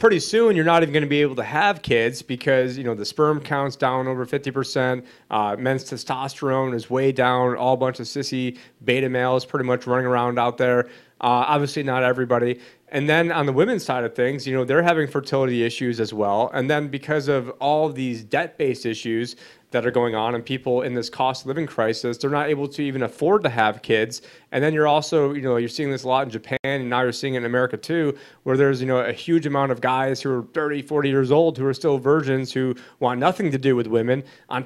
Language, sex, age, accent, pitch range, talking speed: English, male, 30-49, American, 125-145 Hz, 235 wpm